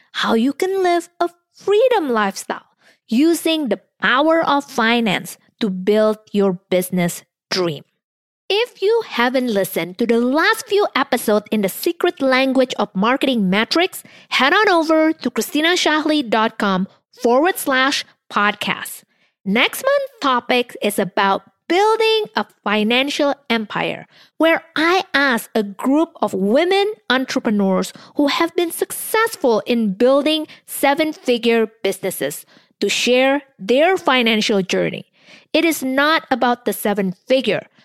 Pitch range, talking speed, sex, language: 220-325 Hz, 120 wpm, female, English